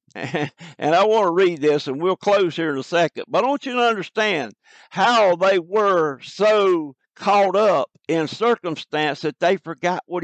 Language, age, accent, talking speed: English, 60-79, American, 180 wpm